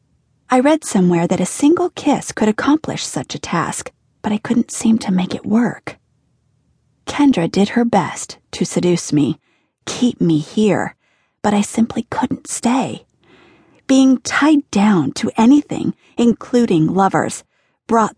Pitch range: 180-235 Hz